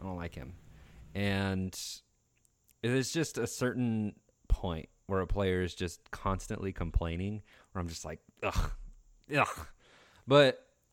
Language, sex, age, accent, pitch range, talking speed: English, male, 30-49, American, 85-110 Hz, 135 wpm